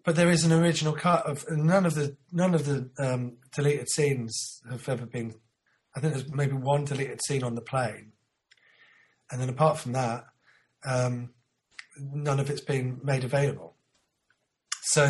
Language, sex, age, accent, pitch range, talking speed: English, male, 30-49, British, 130-155 Hz, 170 wpm